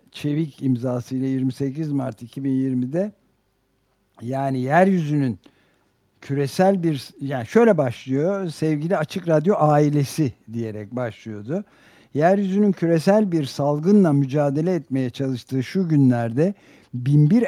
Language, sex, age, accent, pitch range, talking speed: Turkish, male, 60-79, native, 130-165 Hz, 95 wpm